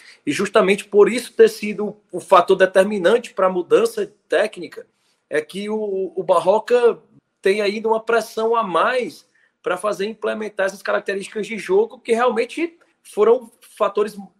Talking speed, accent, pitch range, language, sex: 145 wpm, Brazilian, 170-220 Hz, Portuguese, male